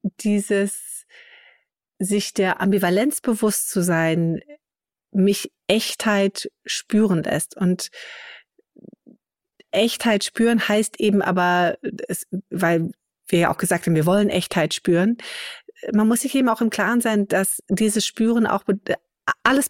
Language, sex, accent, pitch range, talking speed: German, female, German, 195-250 Hz, 120 wpm